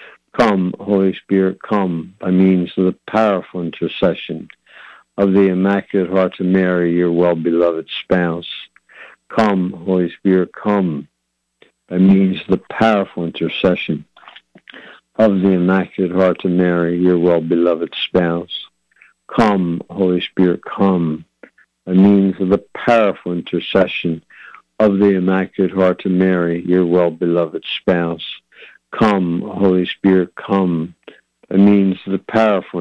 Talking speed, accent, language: 125 wpm, American, English